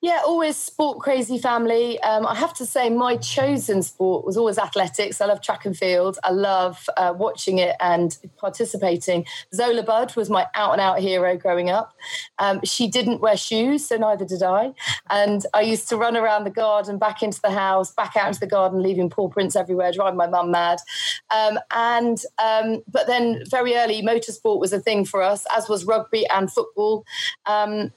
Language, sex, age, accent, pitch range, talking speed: English, female, 40-59, British, 195-235 Hz, 190 wpm